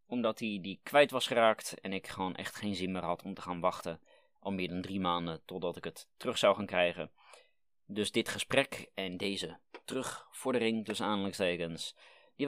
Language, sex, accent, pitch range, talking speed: Dutch, male, Dutch, 90-105 Hz, 190 wpm